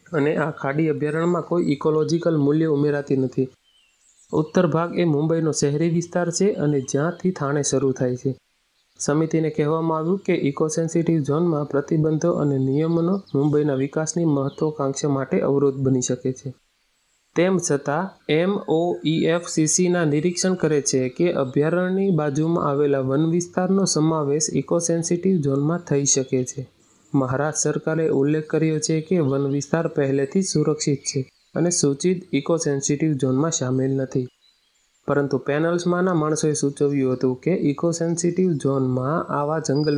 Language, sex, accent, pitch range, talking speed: Gujarati, male, native, 140-165 Hz, 130 wpm